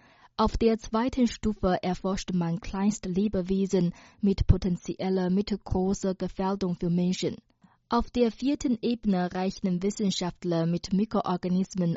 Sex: female